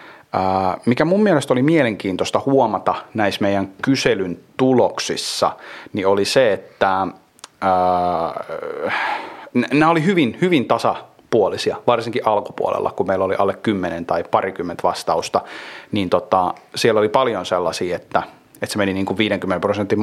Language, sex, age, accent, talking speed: Finnish, male, 30-49, native, 130 wpm